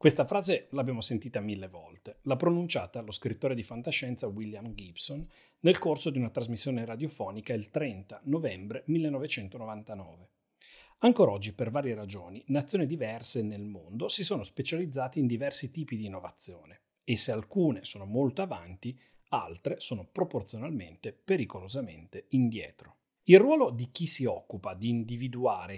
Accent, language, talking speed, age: native, Italian, 140 wpm, 40-59